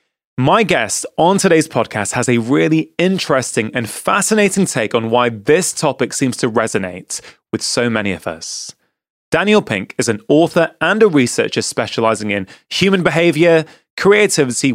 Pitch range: 120-175 Hz